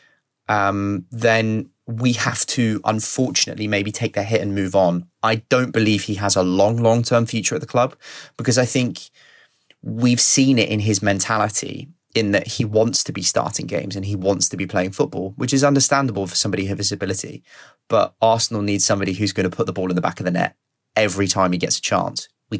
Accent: British